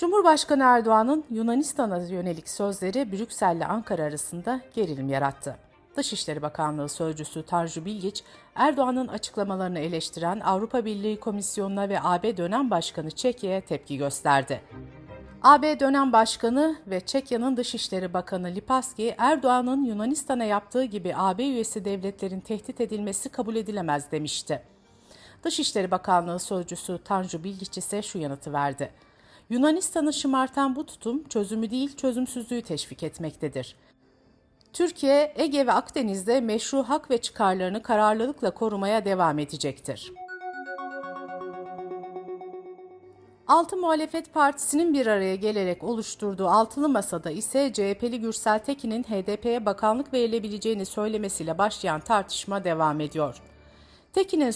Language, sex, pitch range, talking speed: Turkish, female, 180-260 Hz, 110 wpm